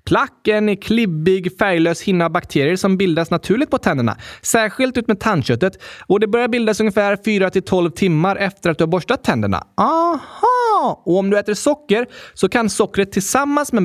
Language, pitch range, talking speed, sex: Swedish, 160-255 Hz, 170 wpm, male